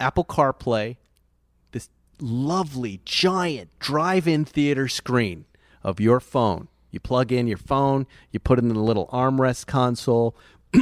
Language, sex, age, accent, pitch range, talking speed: English, male, 40-59, American, 110-145 Hz, 135 wpm